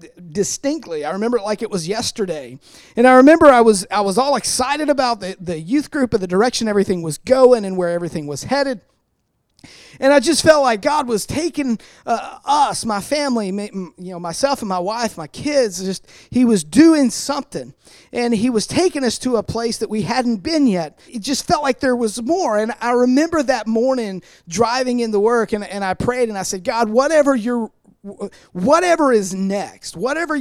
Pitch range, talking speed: 200-270 Hz, 195 wpm